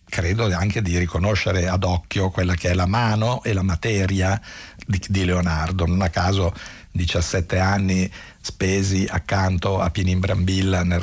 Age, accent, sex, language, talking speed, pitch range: 60-79, native, male, Italian, 140 wpm, 90-100 Hz